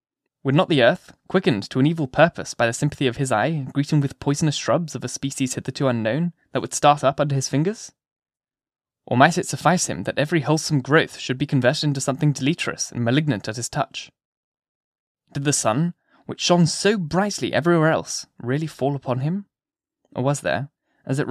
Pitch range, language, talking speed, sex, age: 130-155 Hz, English, 195 wpm, male, 10-29